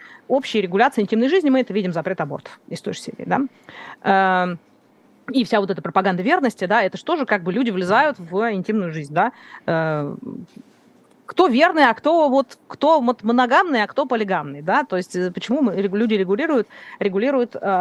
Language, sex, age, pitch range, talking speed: Russian, female, 30-49, 195-260 Hz, 170 wpm